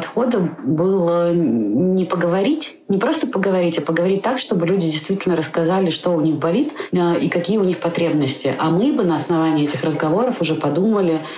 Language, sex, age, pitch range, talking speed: Russian, female, 30-49, 140-170 Hz, 165 wpm